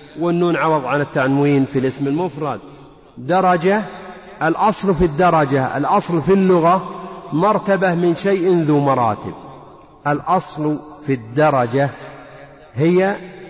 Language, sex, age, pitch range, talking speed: Arabic, male, 50-69, 140-180 Hz, 100 wpm